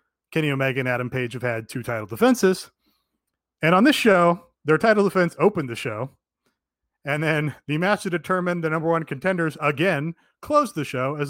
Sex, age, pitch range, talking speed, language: male, 30-49, 125-165 Hz, 185 wpm, English